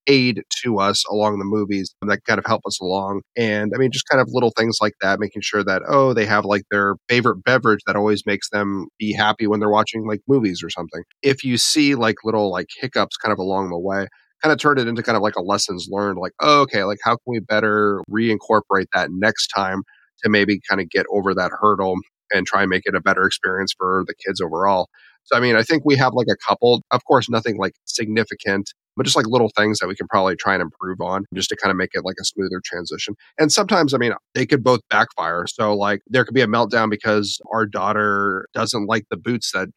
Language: English